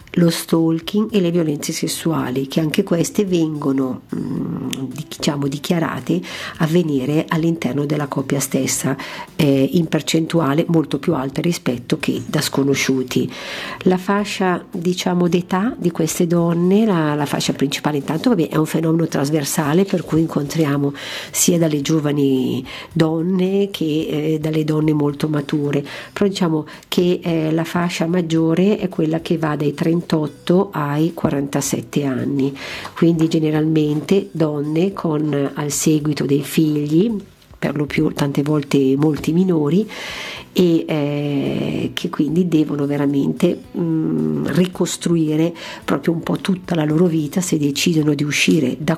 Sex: female